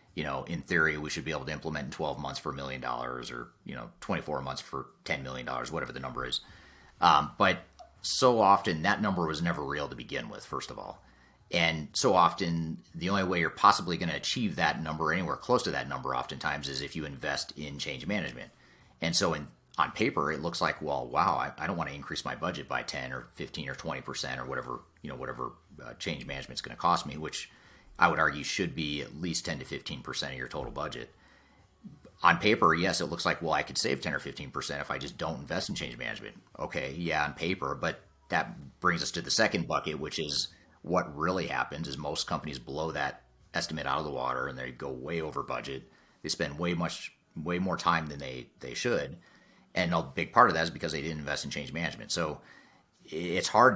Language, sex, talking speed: English, male, 230 wpm